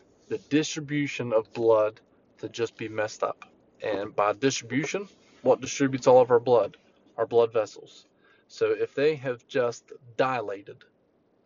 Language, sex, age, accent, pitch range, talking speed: English, male, 20-39, American, 120-160 Hz, 140 wpm